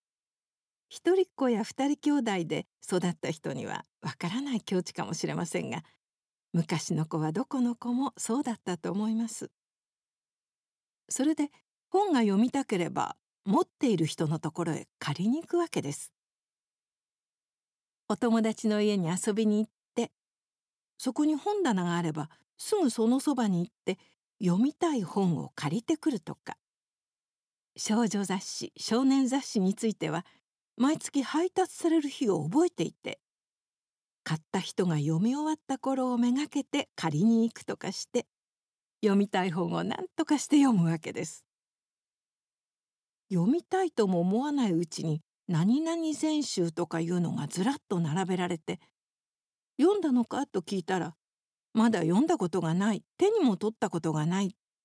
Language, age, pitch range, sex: Japanese, 60-79, 175-270 Hz, female